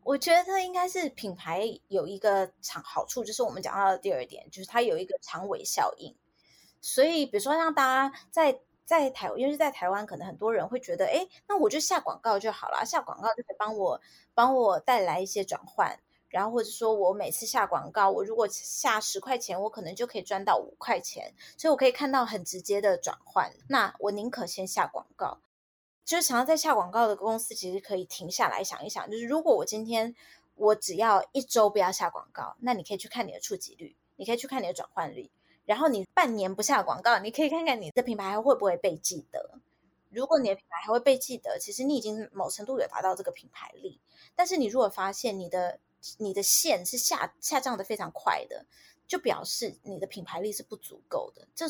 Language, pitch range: Chinese, 200-280 Hz